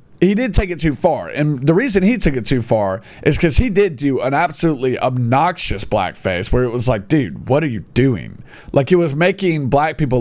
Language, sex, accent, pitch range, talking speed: English, male, American, 135-195 Hz, 225 wpm